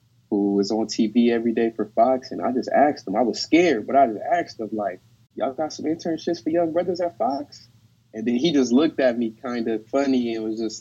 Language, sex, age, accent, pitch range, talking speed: English, male, 20-39, American, 110-140 Hz, 245 wpm